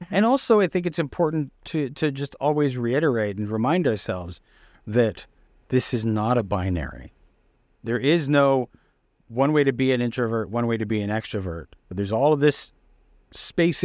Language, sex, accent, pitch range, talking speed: English, male, American, 110-140 Hz, 180 wpm